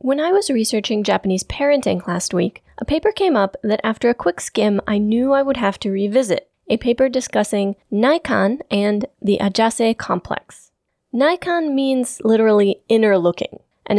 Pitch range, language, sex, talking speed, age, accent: 195-255 Hz, English, female, 160 wpm, 20-39, American